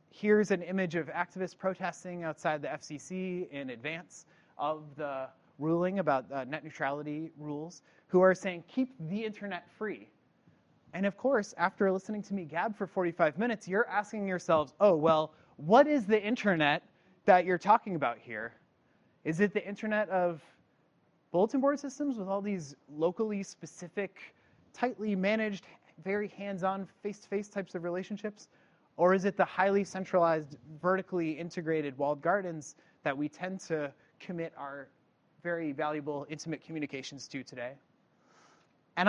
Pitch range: 155-200 Hz